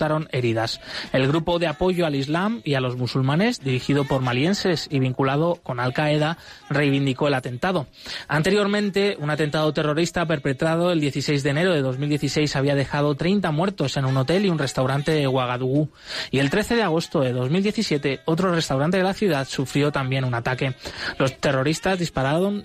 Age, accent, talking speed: 20-39, Spanish, 165 wpm